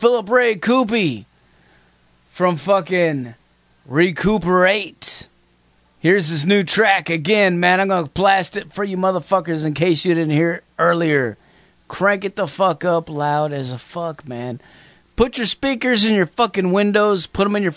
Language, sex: English, male